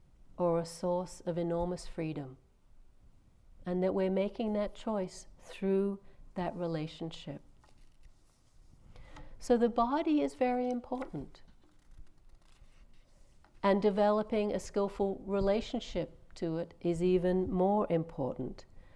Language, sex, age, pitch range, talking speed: English, female, 60-79, 165-200 Hz, 100 wpm